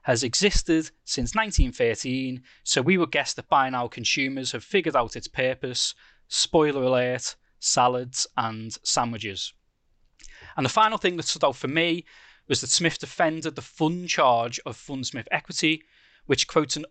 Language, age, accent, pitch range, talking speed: English, 20-39, British, 125-165 Hz, 155 wpm